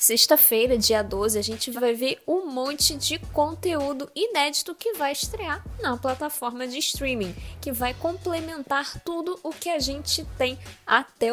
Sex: female